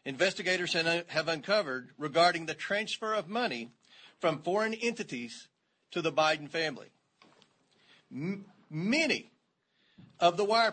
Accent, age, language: American, 40-59, English